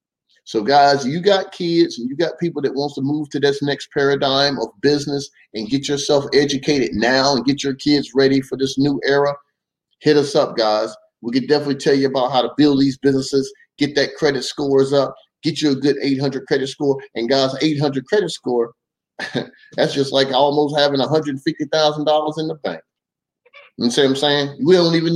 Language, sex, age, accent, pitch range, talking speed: English, male, 30-49, American, 140-155 Hz, 195 wpm